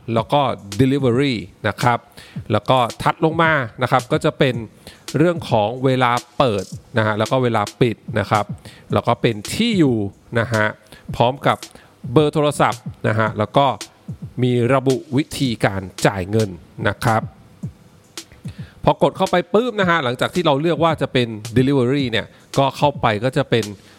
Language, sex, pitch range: English, male, 115-155 Hz